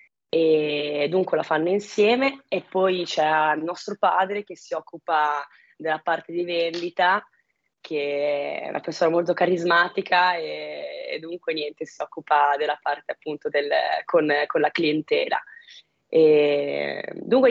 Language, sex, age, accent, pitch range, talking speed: Italian, female, 20-39, native, 155-190 Hz, 135 wpm